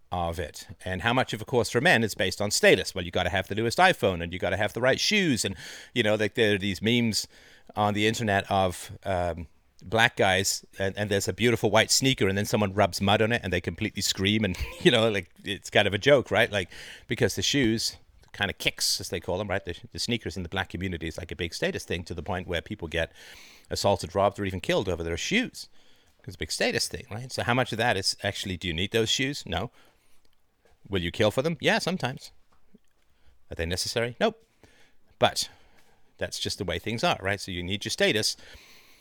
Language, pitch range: English, 90-110 Hz